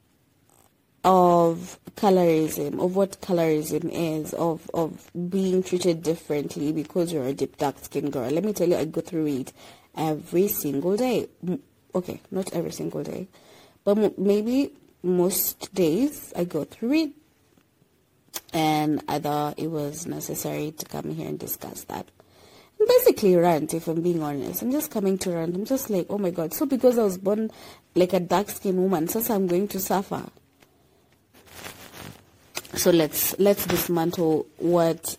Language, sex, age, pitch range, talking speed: English, female, 20-39, 155-200 Hz, 160 wpm